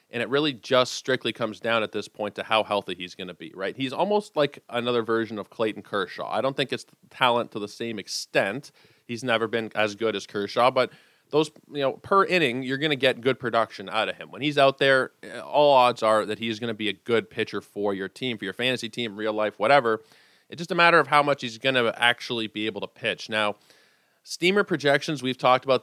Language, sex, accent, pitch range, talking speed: English, male, American, 110-135 Hz, 240 wpm